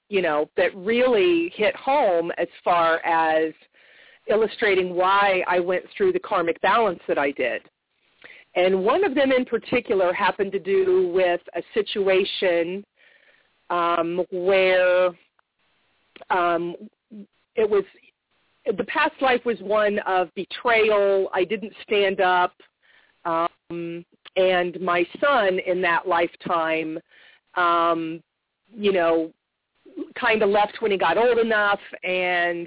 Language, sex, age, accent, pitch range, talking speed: English, female, 40-59, American, 175-215 Hz, 125 wpm